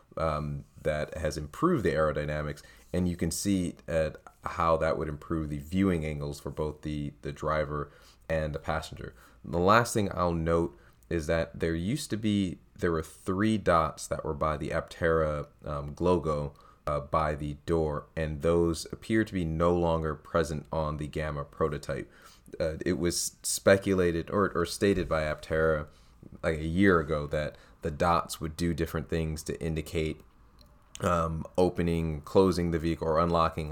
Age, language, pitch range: 30-49, English, 75-85 Hz